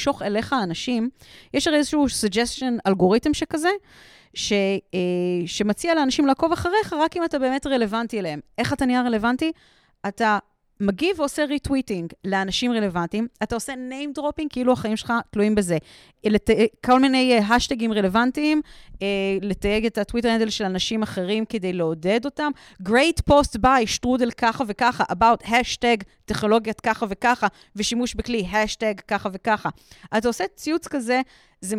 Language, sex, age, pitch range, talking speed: Hebrew, female, 30-49, 195-270 Hz, 140 wpm